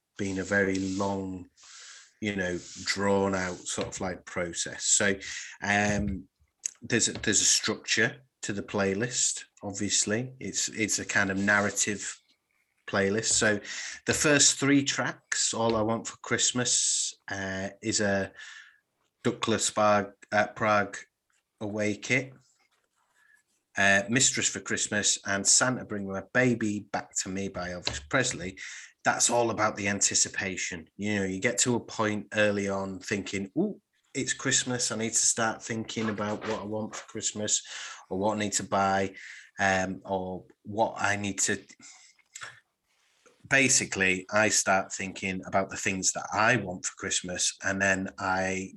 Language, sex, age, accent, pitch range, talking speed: English, male, 30-49, British, 95-110 Hz, 150 wpm